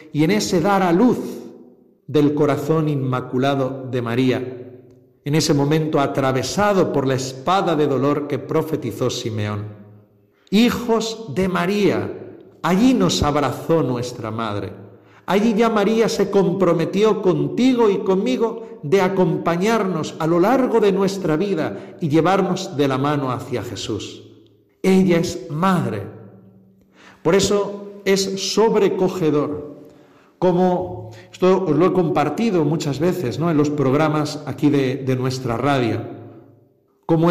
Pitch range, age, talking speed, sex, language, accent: 125-190 Hz, 50-69, 125 wpm, male, Spanish, Spanish